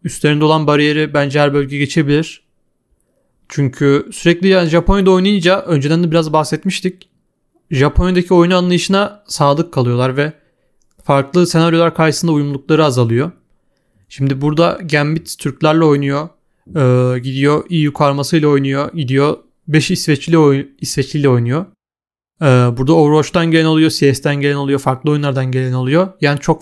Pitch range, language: 140-170 Hz, Turkish